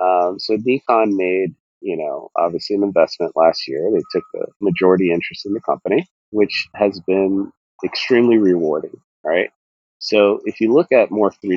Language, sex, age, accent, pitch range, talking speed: English, male, 40-59, American, 85-105 Hz, 160 wpm